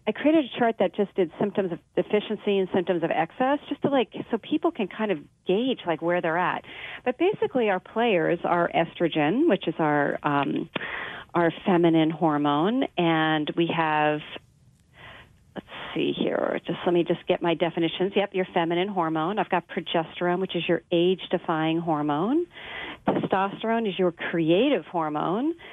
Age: 40-59